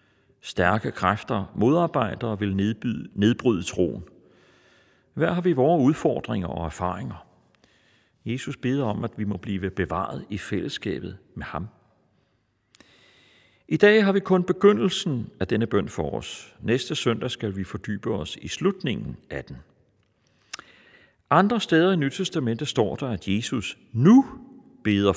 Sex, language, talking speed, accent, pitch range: male, Danish, 140 wpm, native, 100-165 Hz